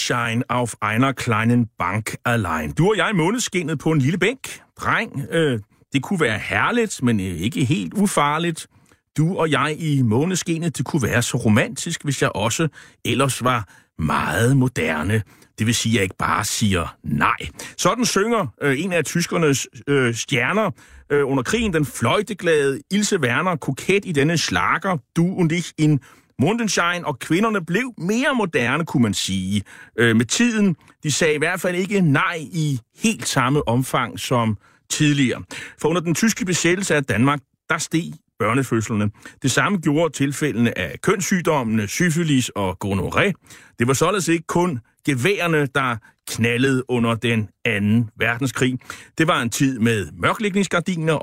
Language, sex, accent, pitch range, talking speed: Danish, male, native, 120-170 Hz, 160 wpm